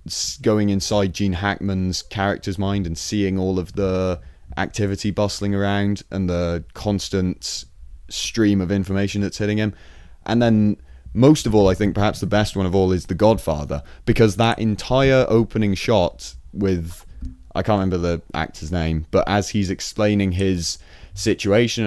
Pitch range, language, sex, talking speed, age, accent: 85-105 Hz, English, male, 155 wpm, 30-49, British